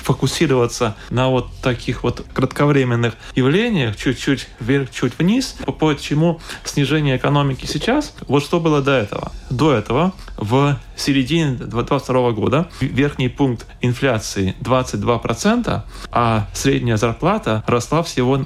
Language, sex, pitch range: Russian, male, 120-145 Hz